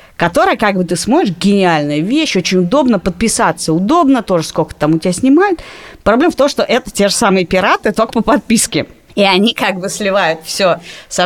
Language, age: Russian, 30-49